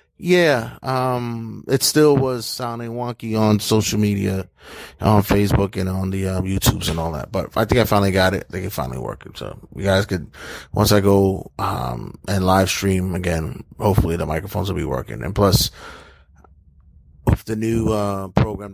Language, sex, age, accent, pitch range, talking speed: English, male, 30-49, American, 95-115 Hz, 185 wpm